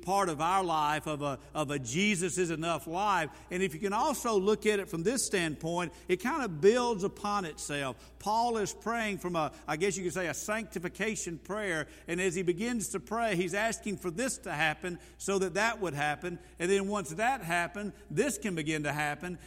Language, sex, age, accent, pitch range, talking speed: English, male, 50-69, American, 170-210 Hz, 215 wpm